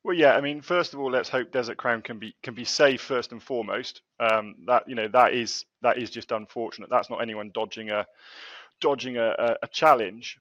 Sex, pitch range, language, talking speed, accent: male, 110-130 Hz, English, 220 wpm, British